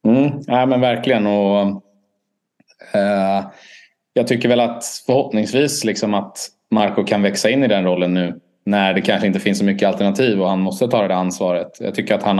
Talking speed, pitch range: 200 wpm, 95-115 Hz